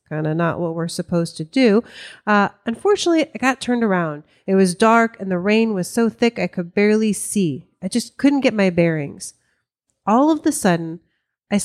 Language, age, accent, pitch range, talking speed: English, 30-49, American, 175-230 Hz, 195 wpm